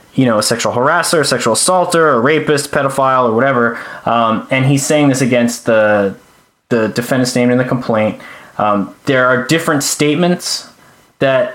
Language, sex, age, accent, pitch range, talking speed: English, male, 20-39, American, 120-145 Hz, 165 wpm